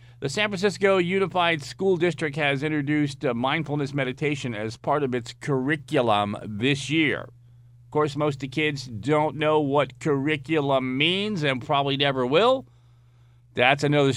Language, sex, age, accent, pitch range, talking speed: English, male, 40-59, American, 120-155 Hz, 145 wpm